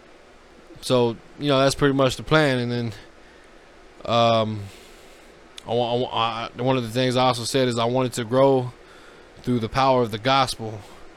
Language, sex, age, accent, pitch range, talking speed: English, male, 20-39, American, 120-140 Hz, 165 wpm